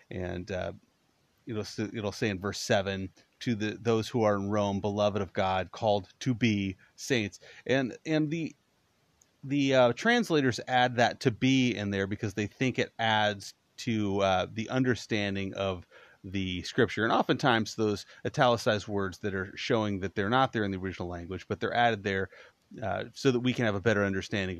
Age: 30-49